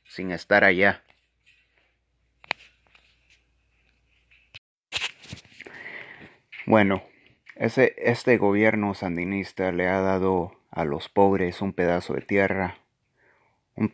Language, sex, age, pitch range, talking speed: English, male, 30-49, 95-115 Hz, 80 wpm